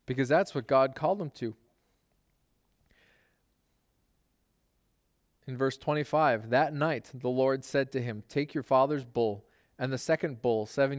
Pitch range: 130-175 Hz